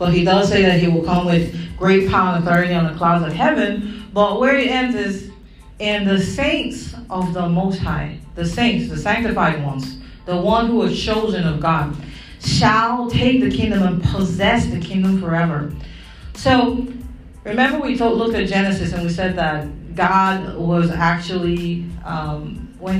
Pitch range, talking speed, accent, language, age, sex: 160-195 Hz, 170 wpm, American, English, 40-59, female